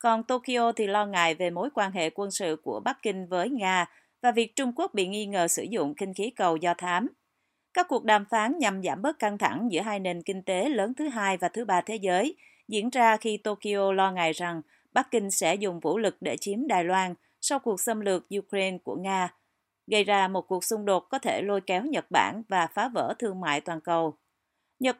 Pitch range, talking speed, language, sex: 185-230 Hz, 230 wpm, Vietnamese, female